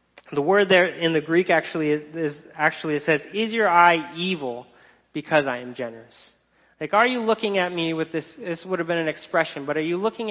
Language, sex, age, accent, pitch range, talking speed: English, male, 30-49, American, 155-205 Hz, 220 wpm